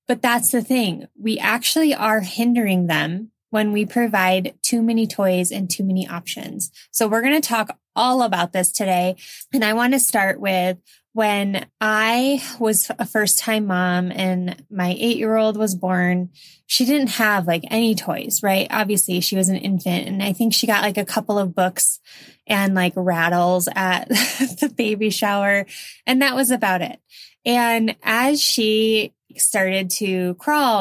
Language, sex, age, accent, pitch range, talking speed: English, female, 20-39, American, 190-245 Hz, 170 wpm